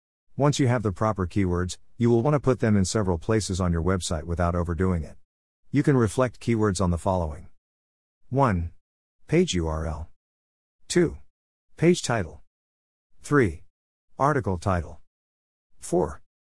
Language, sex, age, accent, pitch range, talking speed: English, male, 50-69, American, 85-110 Hz, 140 wpm